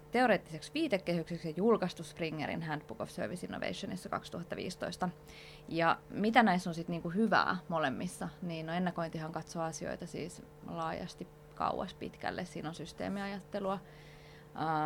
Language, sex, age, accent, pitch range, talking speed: Finnish, female, 20-39, native, 155-185 Hz, 120 wpm